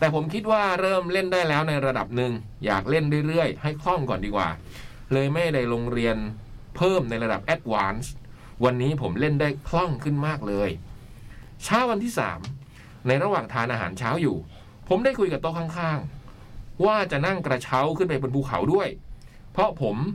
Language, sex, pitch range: Thai, male, 115-160 Hz